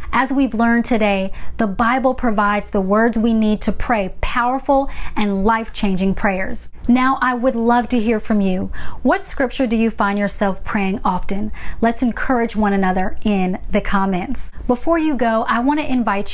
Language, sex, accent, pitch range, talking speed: English, female, American, 205-245 Hz, 175 wpm